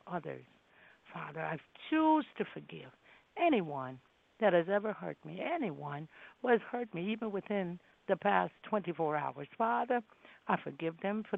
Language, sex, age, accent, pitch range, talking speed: English, female, 60-79, American, 180-230 Hz, 155 wpm